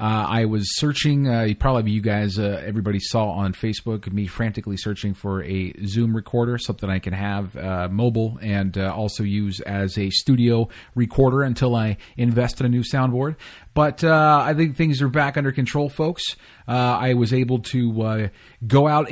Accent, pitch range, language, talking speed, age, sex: American, 110-155 Hz, English, 185 wpm, 30-49, male